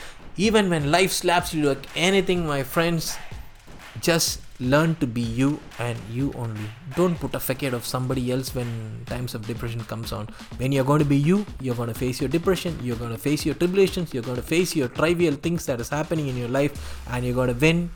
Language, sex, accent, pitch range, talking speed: Tamil, male, native, 125-170 Hz, 220 wpm